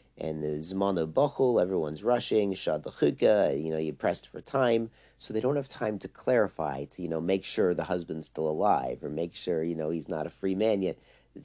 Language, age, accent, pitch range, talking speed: English, 40-59, American, 85-120 Hz, 200 wpm